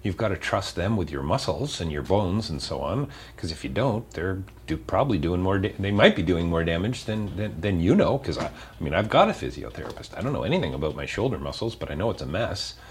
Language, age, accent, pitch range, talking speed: English, 40-59, American, 75-95 Hz, 265 wpm